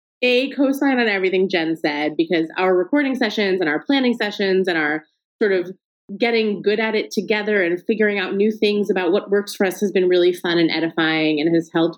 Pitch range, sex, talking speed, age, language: 175-245 Hz, female, 210 wpm, 20-39, English